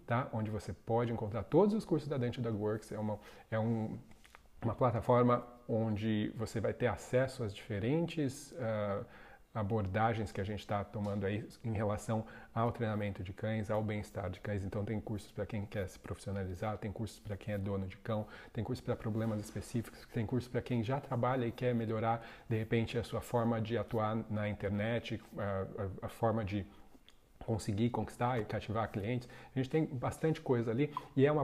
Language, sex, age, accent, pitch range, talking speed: Portuguese, male, 40-59, Brazilian, 105-120 Hz, 195 wpm